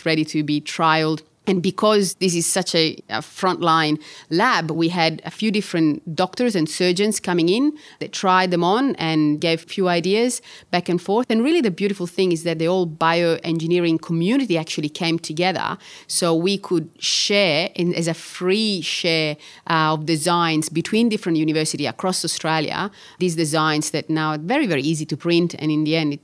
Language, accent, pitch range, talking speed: English, Italian, 160-185 Hz, 185 wpm